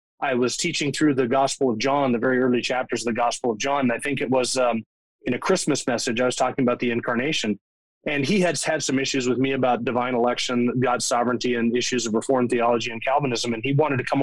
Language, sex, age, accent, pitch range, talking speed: English, male, 20-39, American, 125-145 Hz, 245 wpm